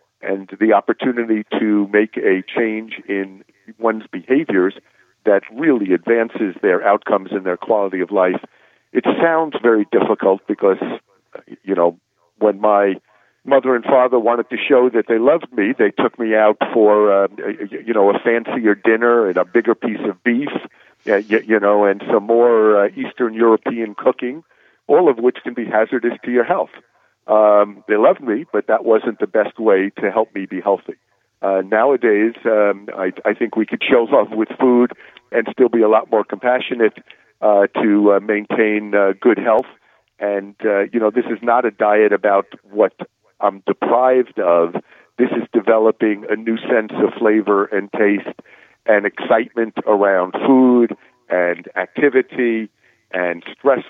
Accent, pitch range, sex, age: American, 100-120 Hz, male, 50-69